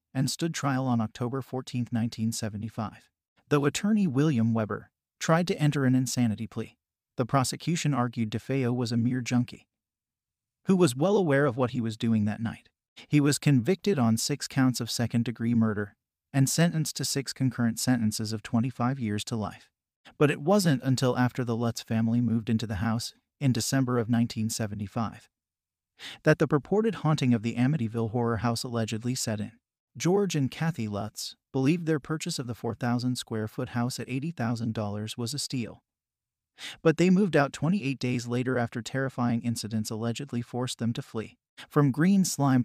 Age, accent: 40-59, American